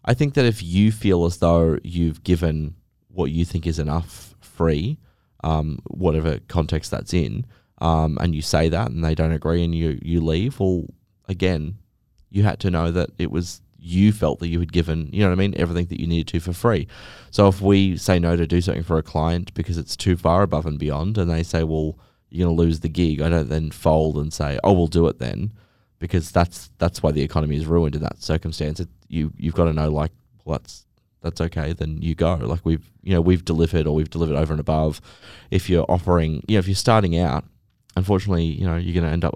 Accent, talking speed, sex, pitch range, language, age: Australian, 235 wpm, male, 80-90 Hz, English, 20-39